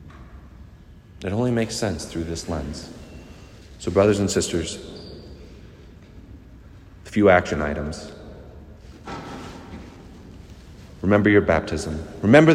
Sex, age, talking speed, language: male, 40-59, 90 wpm, English